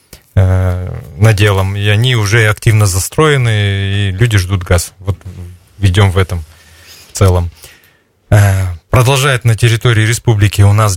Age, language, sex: 20-39, Russian, male